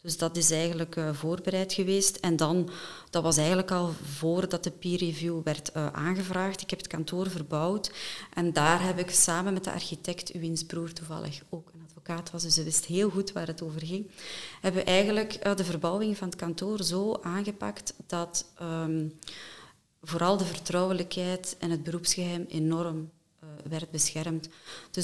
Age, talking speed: 30-49, 165 wpm